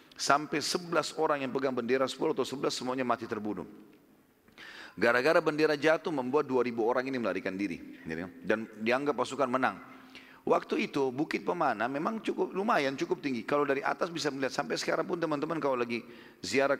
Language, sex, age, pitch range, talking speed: Indonesian, male, 40-59, 125-160 Hz, 165 wpm